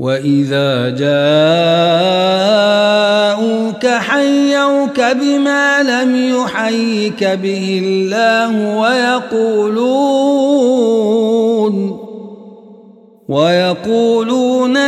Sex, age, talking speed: male, 50-69, 40 wpm